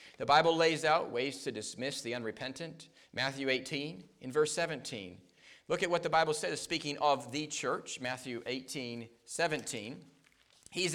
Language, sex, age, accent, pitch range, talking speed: English, male, 40-59, American, 125-160 Hz, 155 wpm